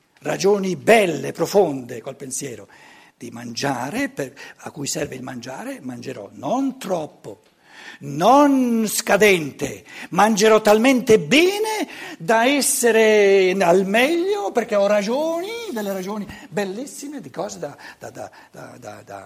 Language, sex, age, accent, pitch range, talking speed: Italian, male, 60-79, native, 160-250 Hz, 120 wpm